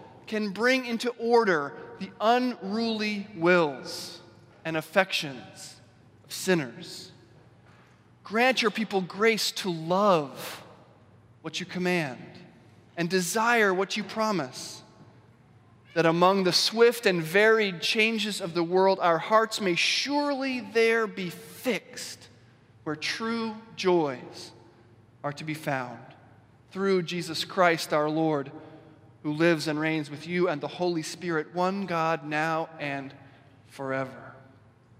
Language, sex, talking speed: English, male, 120 wpm